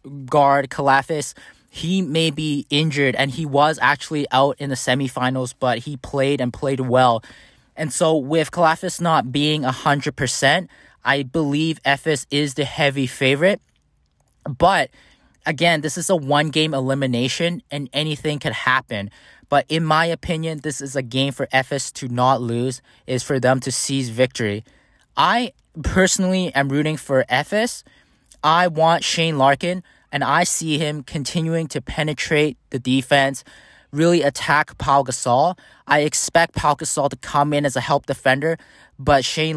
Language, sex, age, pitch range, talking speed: English, male, 20-39, 130-155 Hz, 155 wpm